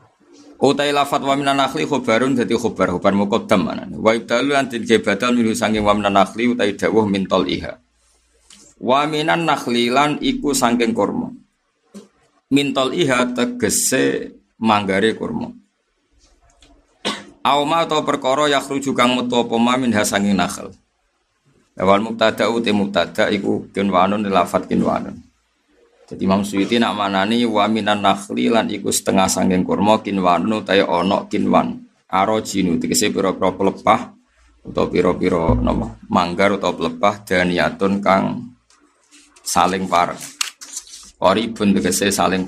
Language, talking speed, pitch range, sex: Indonesian, 110 wpm, 95-130 Hz, male